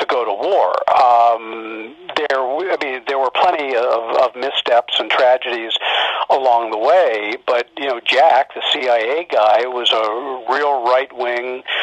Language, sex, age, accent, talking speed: English, male, 50-69, American, 140 wpm